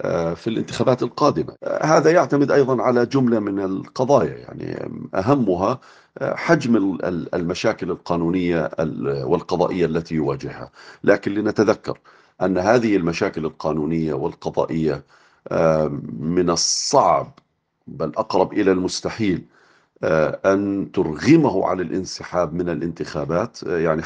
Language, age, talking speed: Arabic, 50-69, 95 wpm